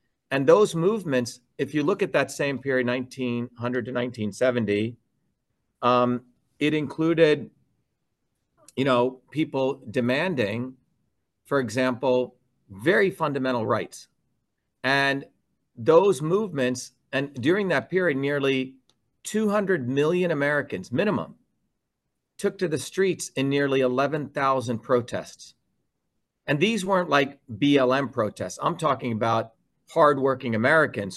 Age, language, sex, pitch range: 50-69, English, male, 120-145 Hz